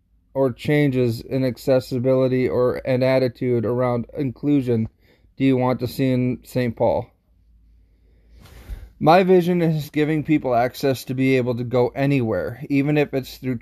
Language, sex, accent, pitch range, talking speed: English, male, American, 120-135 Hz, 145 wpm